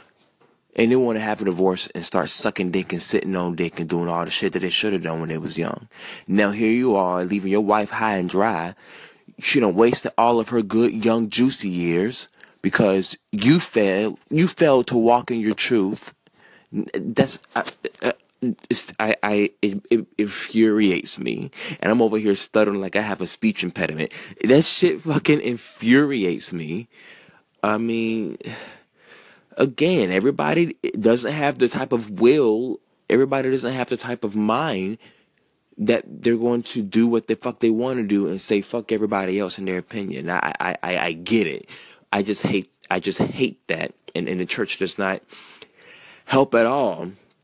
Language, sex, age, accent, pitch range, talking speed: English, male, 20-39, American, 95-120 Hz, 180 wpm